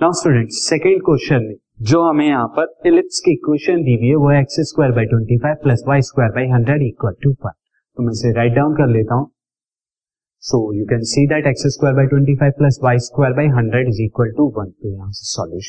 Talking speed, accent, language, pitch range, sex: 55 wpm, native, Hindi, 115-150 Hz, male